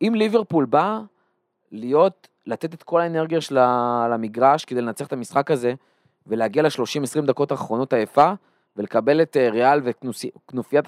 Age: 20-39